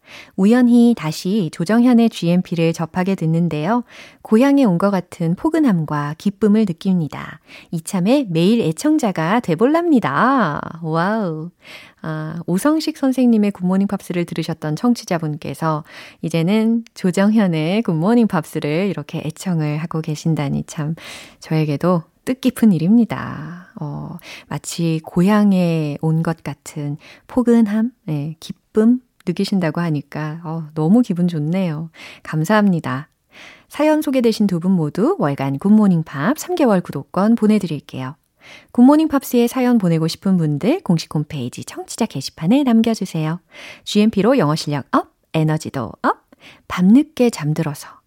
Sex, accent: female, native